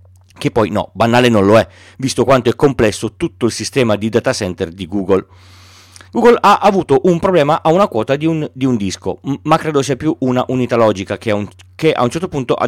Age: 40-59